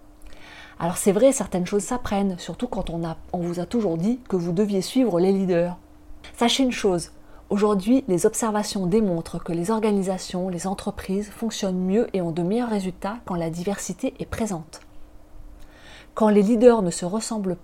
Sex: female